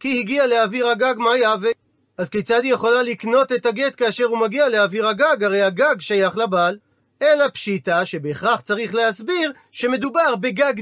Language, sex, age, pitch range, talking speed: Hebrew, male, 40-59, 210-265 Hz, 160 wpm